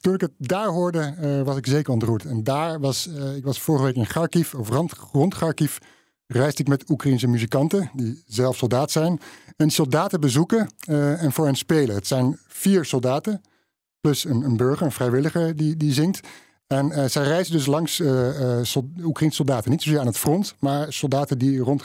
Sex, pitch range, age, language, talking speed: male, 130-160 Hz, 50-69, Dutch, 200 wpm